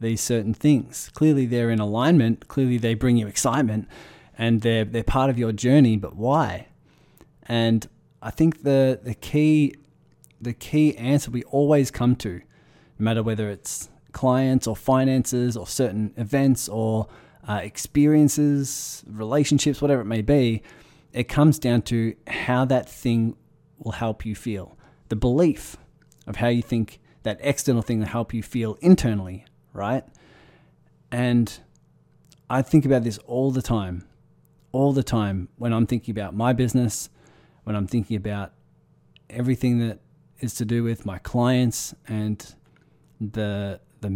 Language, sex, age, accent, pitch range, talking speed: English, male, 20-39, Australian, 110-135 Hz, 150 wpm